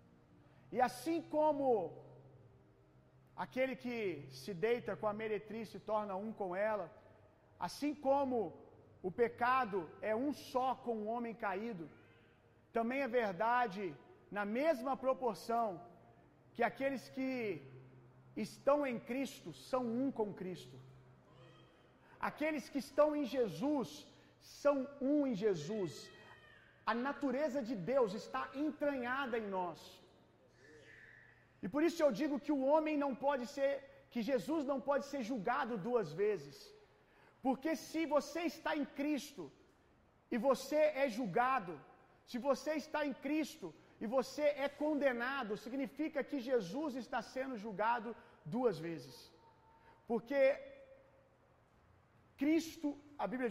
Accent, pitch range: Brazilian, 210-280 Hz